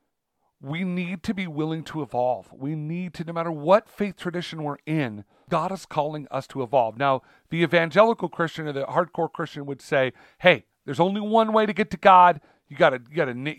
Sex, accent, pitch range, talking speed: male, American, 140-195 Hz, 210 wpm